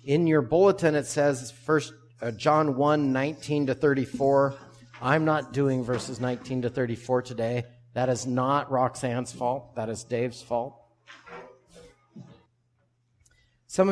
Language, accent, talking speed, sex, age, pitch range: English, American, 125 wpm, male, 50-69, 120-150 Hz